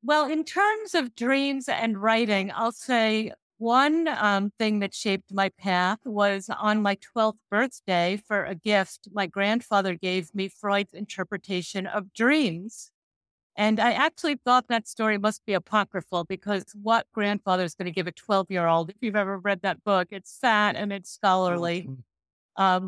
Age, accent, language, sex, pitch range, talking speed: 50-69, American, English, female, 180-220 Hz, 165 wpm